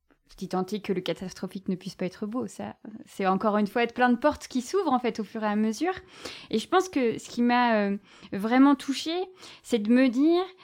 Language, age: French, 20-39